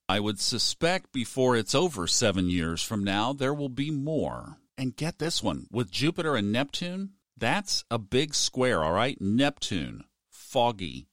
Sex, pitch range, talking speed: male, 100-130 Hz, 160 wpm